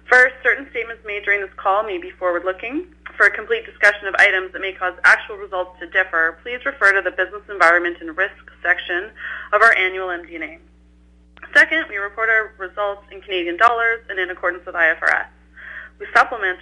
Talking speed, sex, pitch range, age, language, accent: 185 wpm, female, 175-225 Hz, 30-49, English, American